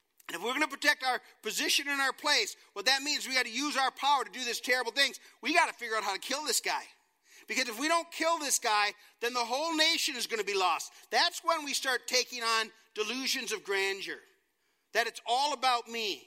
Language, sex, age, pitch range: English, male, 40-59, 250-330 Hz